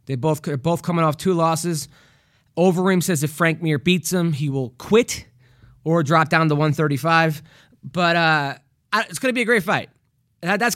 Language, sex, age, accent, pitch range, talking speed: English, male, 20-39, American, 140-185 Hz, 185 wpm